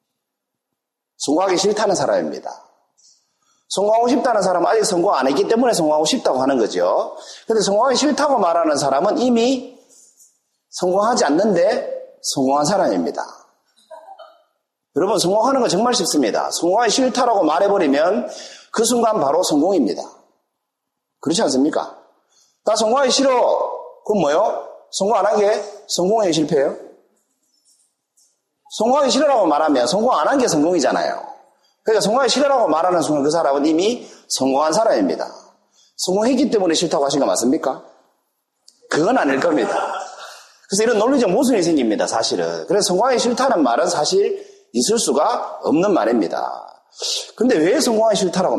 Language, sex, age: Korean, male, 40-59